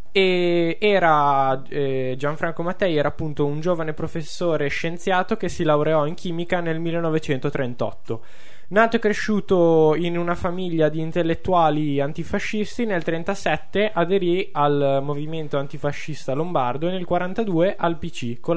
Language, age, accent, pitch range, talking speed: Italian, 10-29, native, 145-180 Hz, 130 wpm